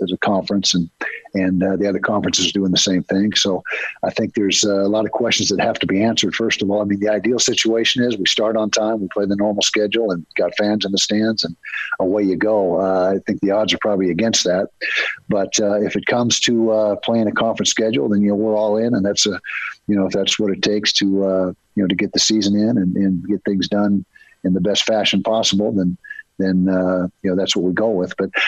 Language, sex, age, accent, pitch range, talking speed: English, male, 50-69, American, 95-105 Hz, 255 wpm